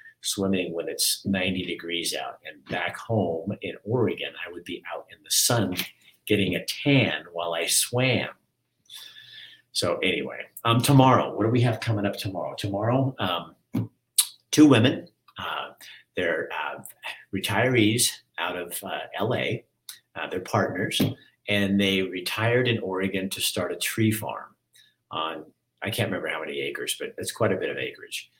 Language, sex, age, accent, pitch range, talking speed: English, male, 50-69, American, 90-130 Hz, 155 wpm